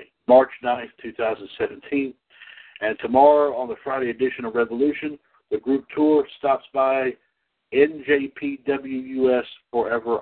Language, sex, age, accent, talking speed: English, male, 60-79, American, 105 wpm